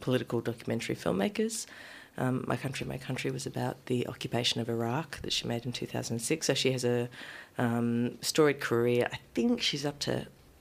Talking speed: 175 wpm